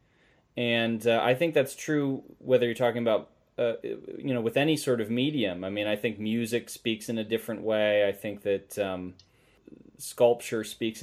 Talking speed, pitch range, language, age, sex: 185 wpm, 105-130 Hz, English, 30-49, male